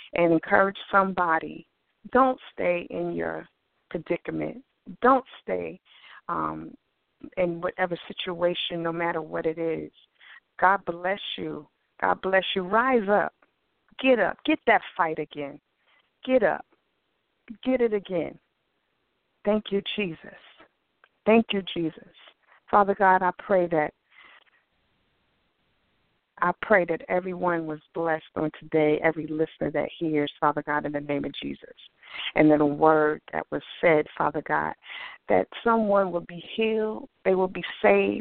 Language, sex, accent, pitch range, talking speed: English, female, American, 160-205 Hz, 135 wpm